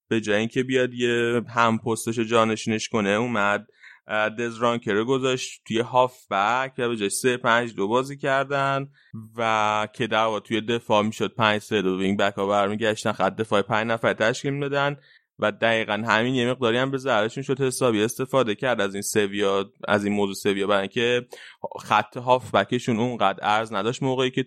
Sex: male